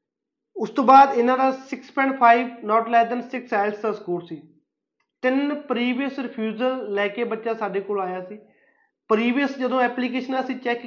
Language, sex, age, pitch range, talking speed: Punjabi, male, 30-49, 210-245 Hz, 160 wpm